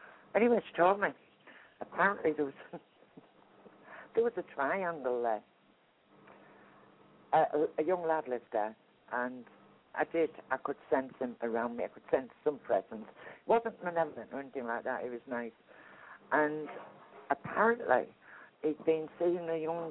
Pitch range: 120-160 Hz